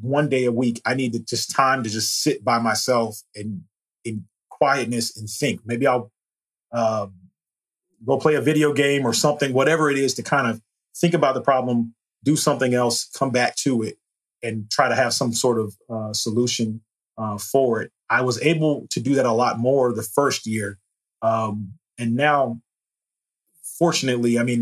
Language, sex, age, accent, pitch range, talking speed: English, male, 30-49, American, 110-130 Hz, 185 wpm